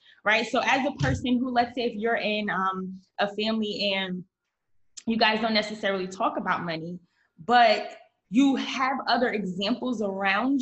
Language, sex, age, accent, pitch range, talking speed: English, female, 20-39, American, 195-250 Hz, 160 wpm